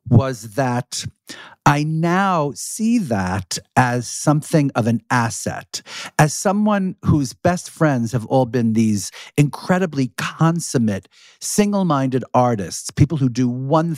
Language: English